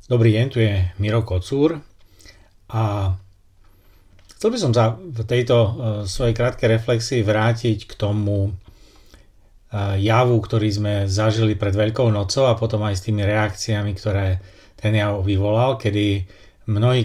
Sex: male